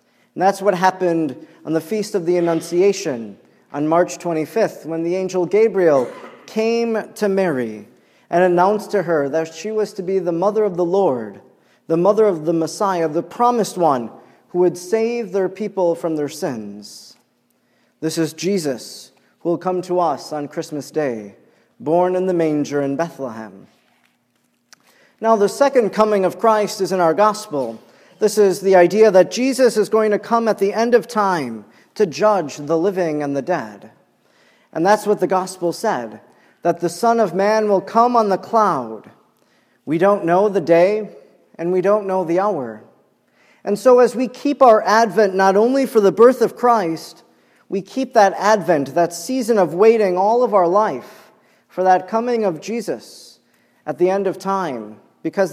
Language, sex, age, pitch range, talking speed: English, male, 40-59, 170-215 Hz, 175 wpm